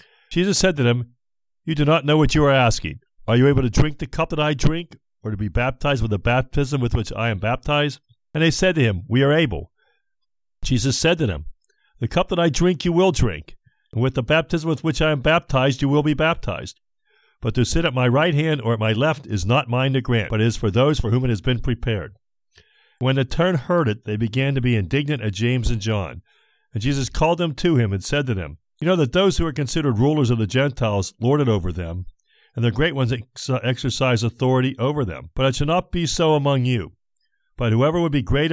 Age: 50-69